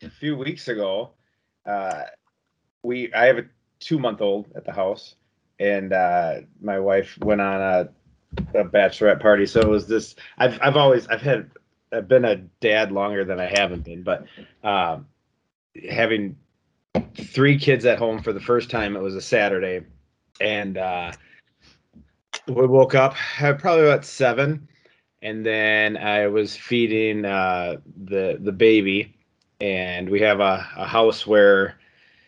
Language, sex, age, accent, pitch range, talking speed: English, male, 30-49, American, 95-120 Hz, 145 wpm